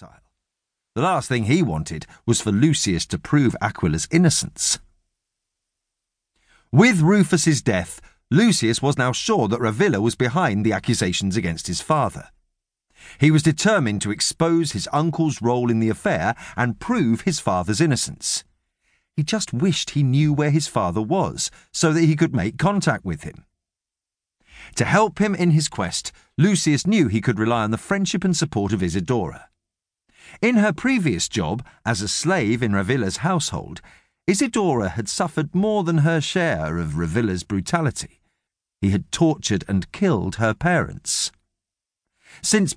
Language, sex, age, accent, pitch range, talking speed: English, male, 50-69, British, 100-170 Hz, 150 wpm